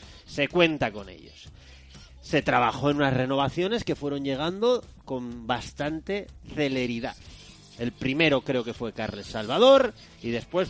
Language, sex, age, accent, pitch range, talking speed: Spanish, male, 30-49, Spanish, 120-155 Hz, 135 wpm